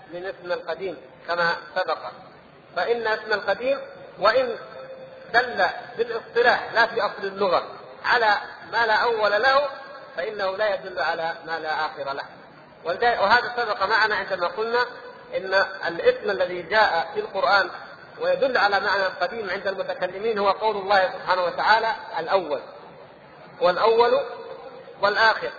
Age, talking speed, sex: 50-69, 125 wpm, male